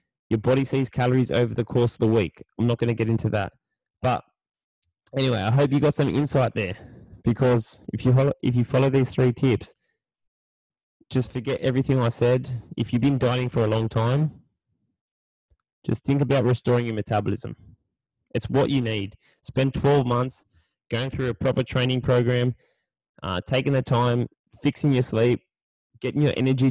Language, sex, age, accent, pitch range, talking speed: English, male, 10-29, Australian, 110-135 Hz, 170 wpm